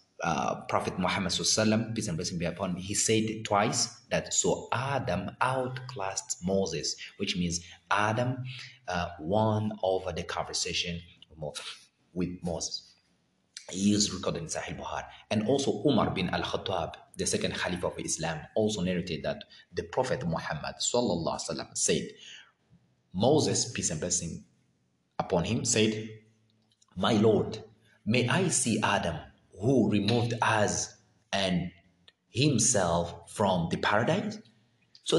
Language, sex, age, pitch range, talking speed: English, male, 30-49, 95-125 Hz, 125 wpm